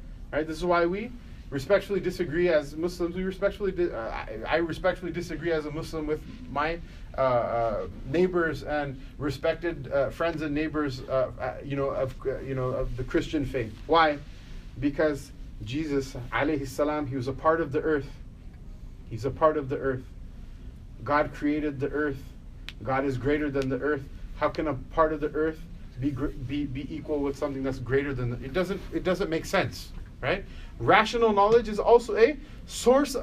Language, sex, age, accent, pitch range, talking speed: English, male, 30-49, American, 135-185 Hz, 180 wpm